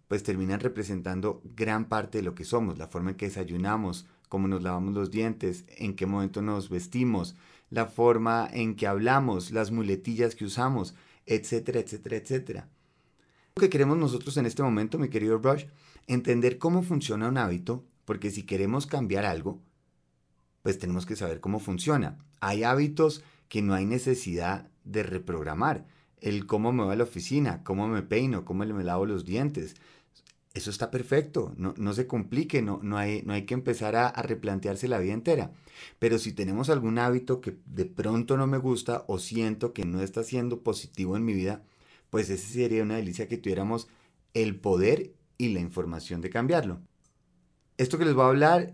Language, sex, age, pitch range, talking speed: Spanish, male, 30-49, 95-125 Hz, 180 wpm